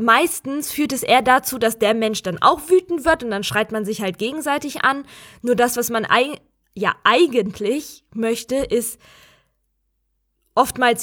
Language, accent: German, German